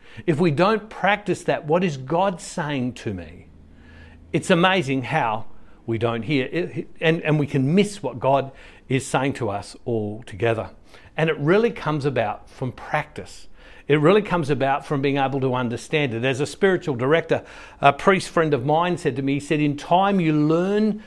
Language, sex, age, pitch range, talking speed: English, male, 60-79, 135-180 Hz, 190 wpm